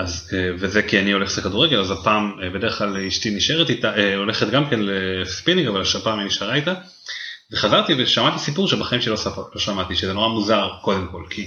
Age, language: 30-49, Hebrew